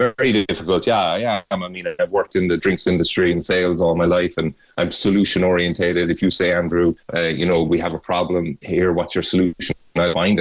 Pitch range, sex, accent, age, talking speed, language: 85-90 Hz, male, Irish, 30-49, 225 wpm, English